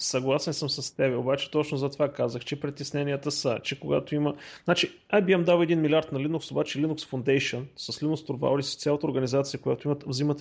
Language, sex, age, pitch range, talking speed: Bulgarian, male, 30-49, 130-175 Hz, 200 wpm